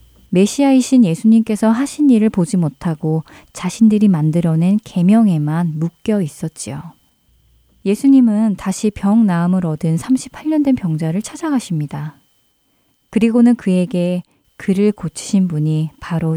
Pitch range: 165-220 Hz